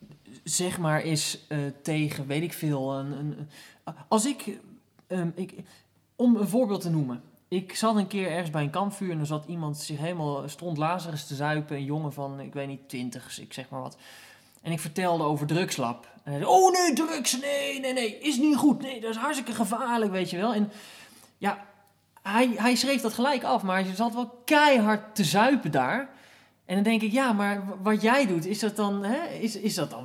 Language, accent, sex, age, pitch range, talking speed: Dutch, Dutch, male, 20-39, 150-225 Hz, 210 wpm